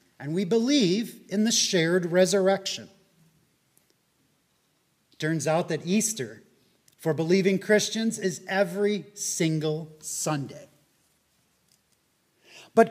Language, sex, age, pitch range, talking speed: English, male, 40-59, 175-230 Hz, 90 wpm